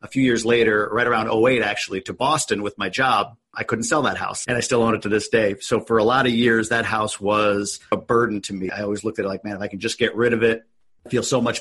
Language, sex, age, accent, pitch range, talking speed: English, male, 40-59, American, 100-115 Hz, 300 wpm